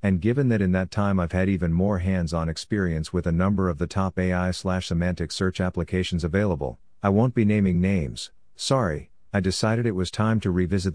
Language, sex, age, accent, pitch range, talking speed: English, male, 50-69, American, 85-100 Hz, 195 wpm